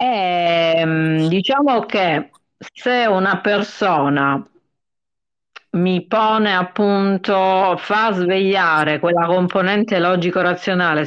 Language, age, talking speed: Italian, 40-59, 75 wpm